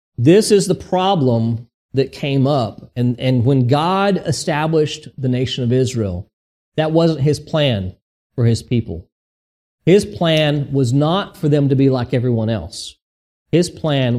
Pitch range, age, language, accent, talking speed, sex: 120-165 Hz, 40-59, English, American, 150 wpm, male